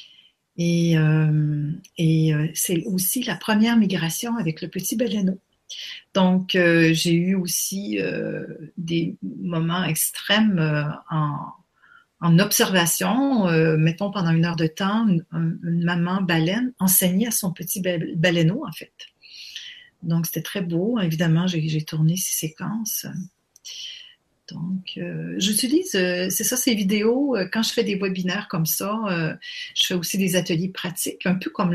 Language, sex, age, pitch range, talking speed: French, female, 40-59, 165-205 Hz, 145 wpm